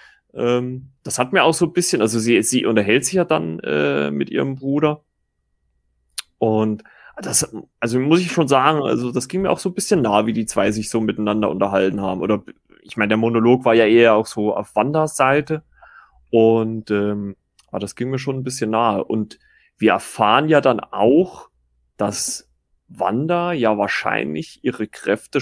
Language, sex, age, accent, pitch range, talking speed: German, male, 30-49, German, 105-130 Hz, 180 wpm